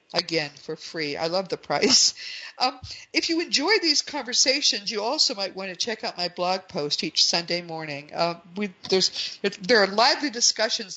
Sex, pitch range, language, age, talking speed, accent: female, 165-220 Hz, English, 50-69, 180 wpm, American